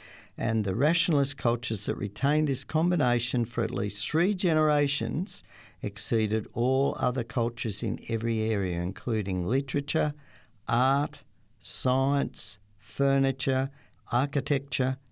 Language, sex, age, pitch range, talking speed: English, male, 50-69, 110-145 Hz, 105 wpm